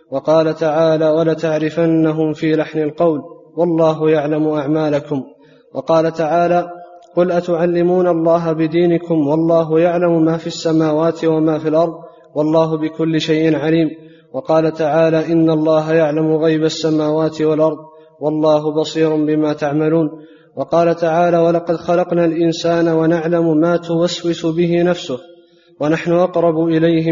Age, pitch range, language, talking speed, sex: 20-39, 155-165 Hz, Arabic, 115 wpm, male